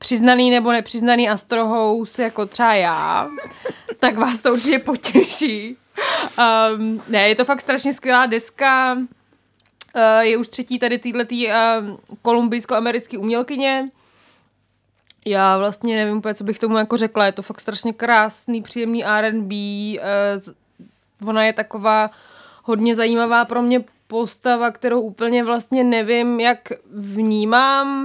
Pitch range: 205-240 Hz